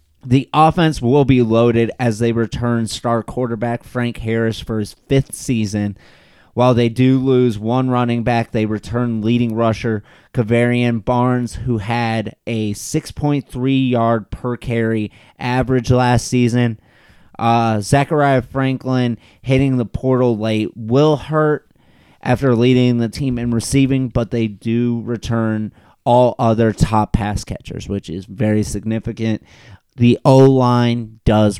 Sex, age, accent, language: male, 30-49, American, English